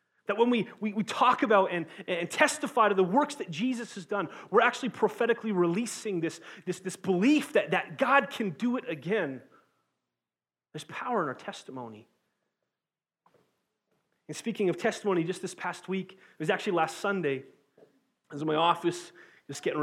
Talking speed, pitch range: 175 wpm, 145-190 Hz